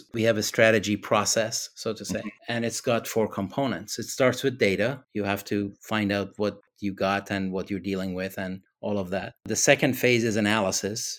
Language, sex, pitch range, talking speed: English, male, 105-120 Hz, 210 wpm